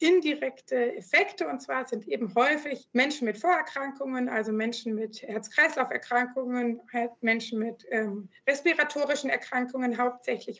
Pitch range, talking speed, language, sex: 235-275 Hz, 115 wpm, German, female